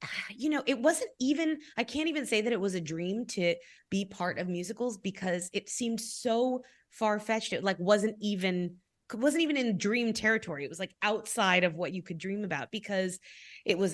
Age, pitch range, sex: 20-39, 165-225 Hz, female